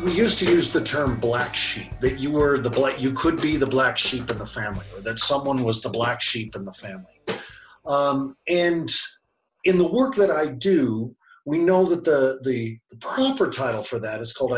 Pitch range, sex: 135-200 Hz, male